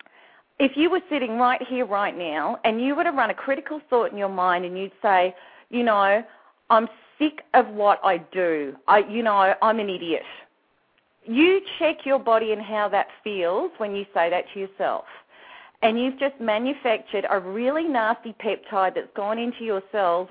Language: English